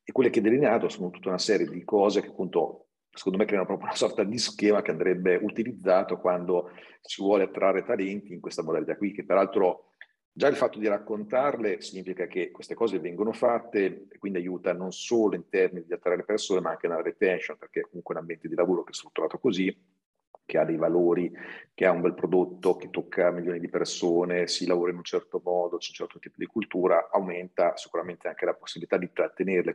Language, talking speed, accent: Italian, 210 wpm, native